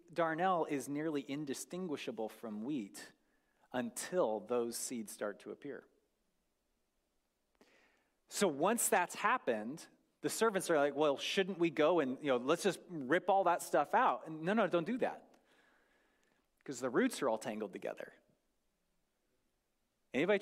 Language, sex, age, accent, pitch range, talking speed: English, male, 30-49, American, 150-215 Hz, 140 wpm